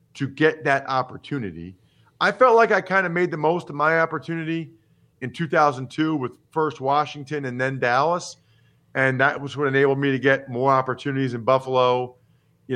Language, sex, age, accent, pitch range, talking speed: English, male, 40-59, American, 135-175 Hz, 175 wpm